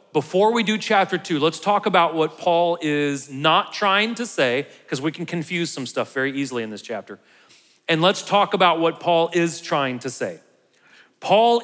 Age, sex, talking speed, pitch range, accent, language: 40-59, male, 190 wpm, 150-195 Hz, American, English